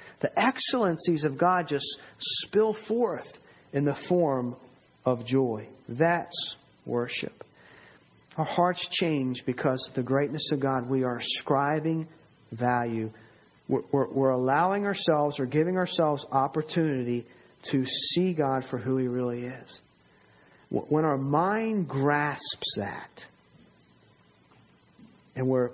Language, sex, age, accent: English, male, 40-59, American